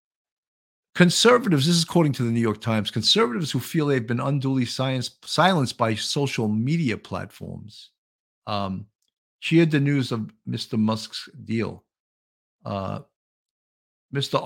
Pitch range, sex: 110-145 Hz, male